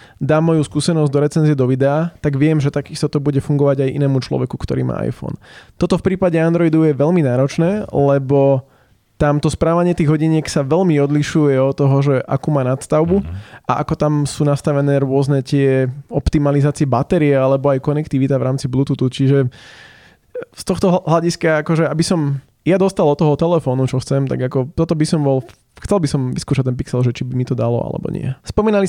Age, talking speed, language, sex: 20-39, 190 wpm, Slovak, male